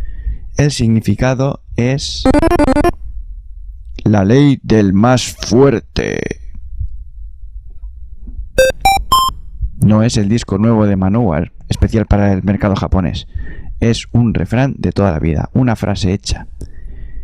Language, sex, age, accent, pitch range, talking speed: Spanish, male, 20-39, Spanish, 80-115 Hz, 105 wpm